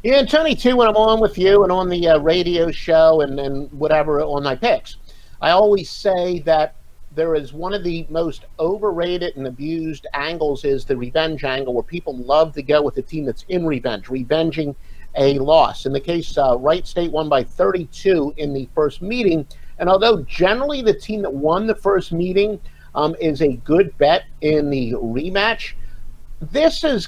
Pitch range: 150-200 Hz